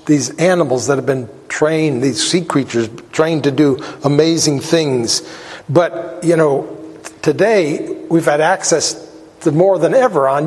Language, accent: English, American